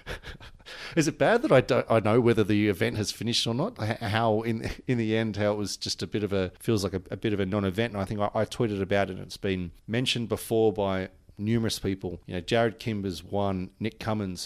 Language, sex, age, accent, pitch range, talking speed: English, male, 30-49, Australian, 95-110 Hz, 245 wpm